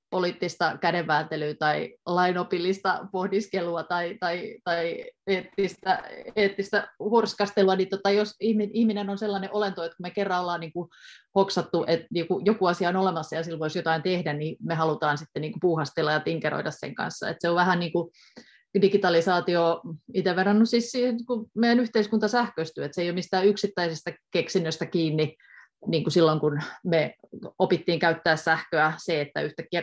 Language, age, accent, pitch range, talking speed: Finnish, 30-49, native, 165-200 Hz, 155 wpm